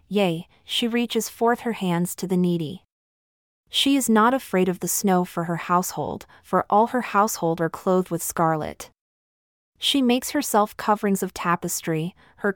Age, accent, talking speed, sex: 30-49, American, 165 wpm, female